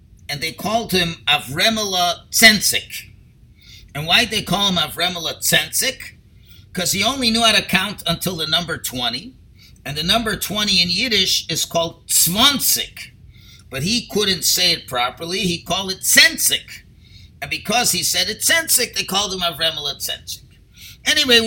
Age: 50-69